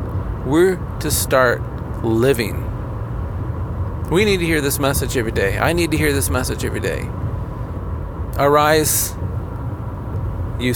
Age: 50-69